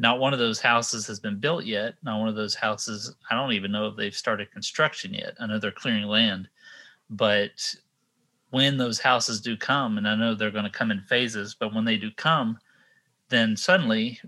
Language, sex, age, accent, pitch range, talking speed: English, male, 30-49, American, 105-115 Hz, 200 wpm